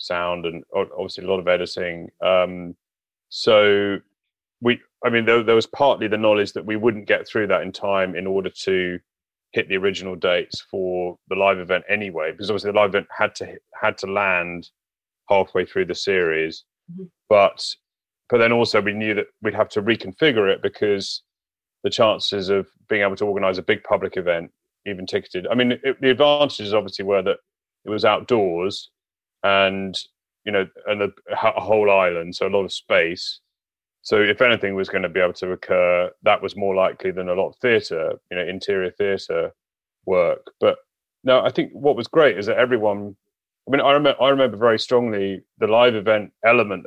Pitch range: 95-125 Hz